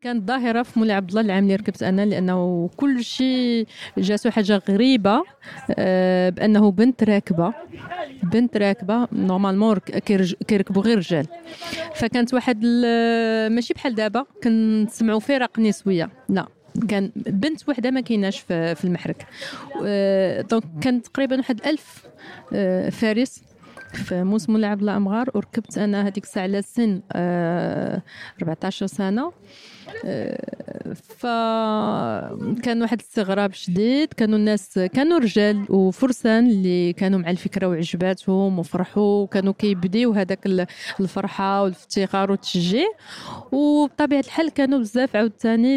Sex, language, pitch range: female, Arabic, 195-240 Hz